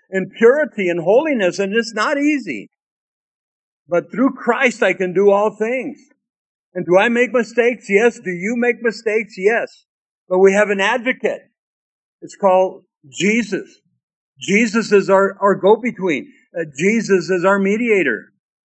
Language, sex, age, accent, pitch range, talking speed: English, male, 50-69, American, 185-235 Hz, 145 wpm